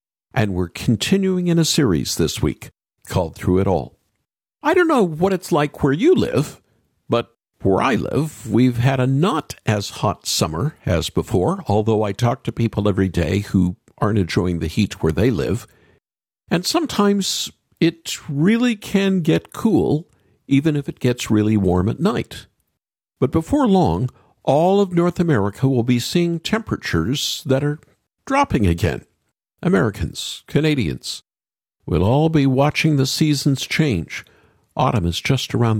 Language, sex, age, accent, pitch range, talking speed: English, male, 50-69, American, 105-170 Hz, 155 wpm